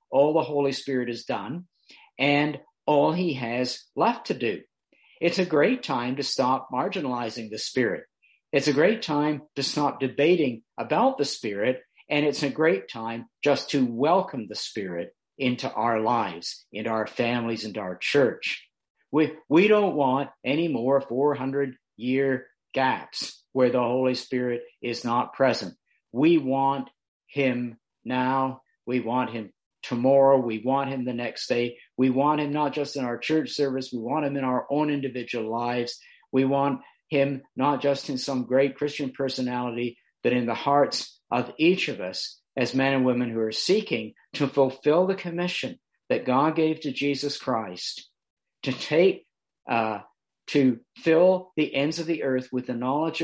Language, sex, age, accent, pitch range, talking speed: English, male, 50-69, American, 125-145 Hz, 165 wpm